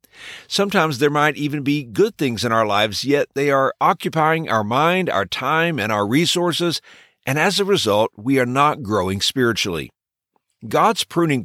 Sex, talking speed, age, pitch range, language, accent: male, 170 wpm, 50-69, 115-165 Hz, English, American